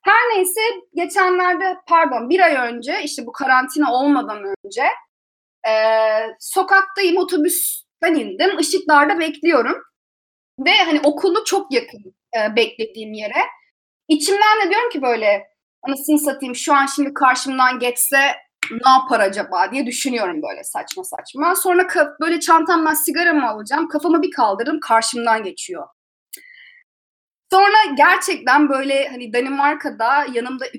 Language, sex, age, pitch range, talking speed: Turkish, female, 30-49, 250-360 Hz, 120 wpm